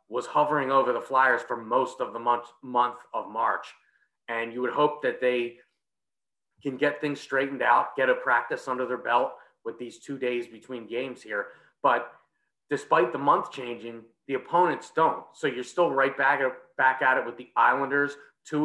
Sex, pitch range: male, 120-150 Hz